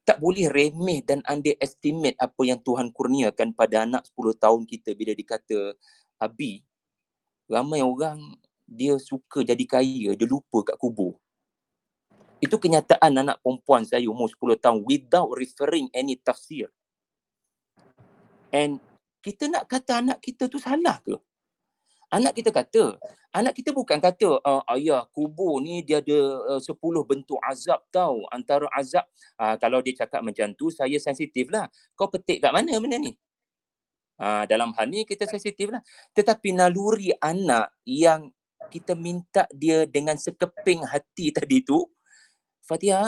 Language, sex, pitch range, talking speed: Malay, male, 140-230 Hz, 140 wpm